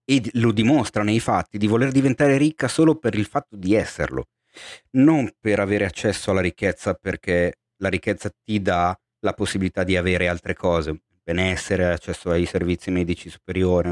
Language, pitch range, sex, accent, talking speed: Italian, 95-120 Hz, male, native, 165 wpm